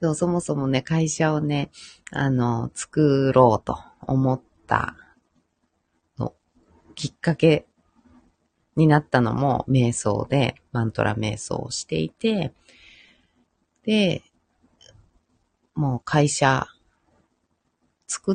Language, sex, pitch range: Japanese, female, 105-170 Hz